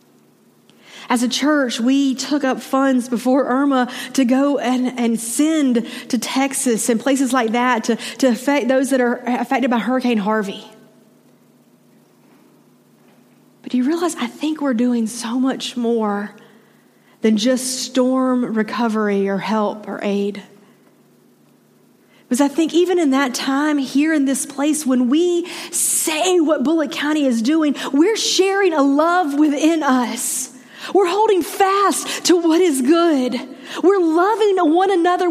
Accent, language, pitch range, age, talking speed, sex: American, English, 250-365 Hz, 40-59, 145 wpm, female